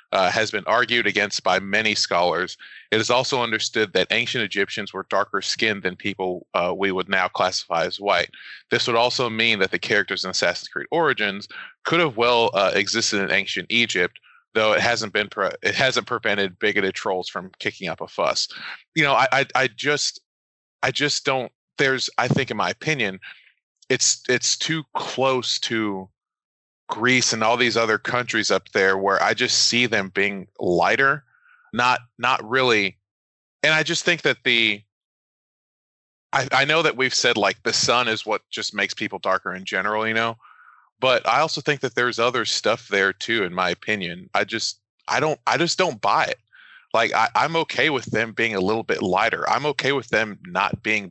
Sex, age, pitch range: male, 20-39, 100-130 Hz